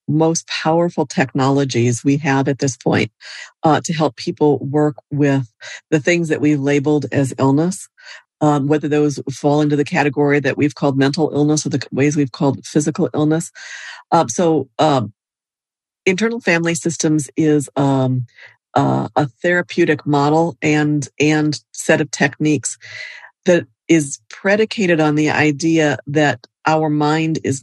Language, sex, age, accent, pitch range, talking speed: English, female, 50-69, American, 135-155 Hz, 145 wpm